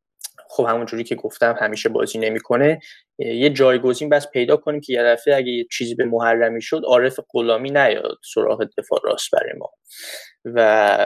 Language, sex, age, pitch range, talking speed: Persian, male, 10-29, 115-165 Hz, 165 wpm